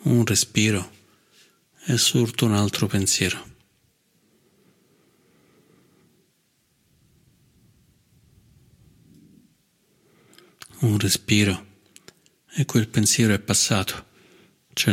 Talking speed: 60 wpm